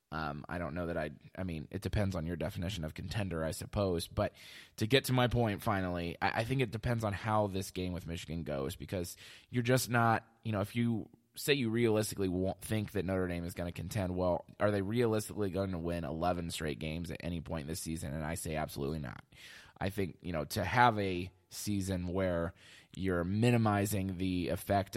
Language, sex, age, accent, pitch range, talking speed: English, male, 20-39, American, 85-105 Hz, 215 wpm